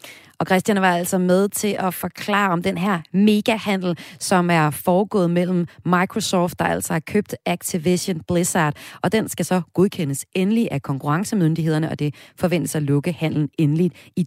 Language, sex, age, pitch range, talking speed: Danish, female, 30-49, 150-210 Hz, 165 wpm